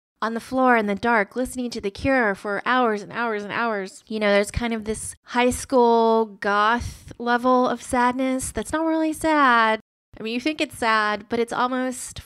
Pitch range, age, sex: 205-245 Hz, 20-39, female